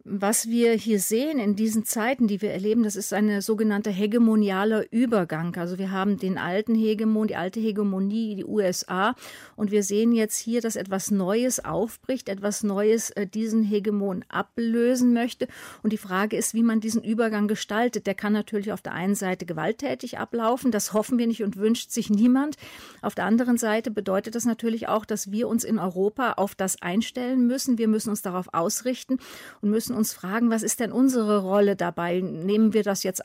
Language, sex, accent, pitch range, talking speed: German, female, German, 195-230 Hz, 190 wpm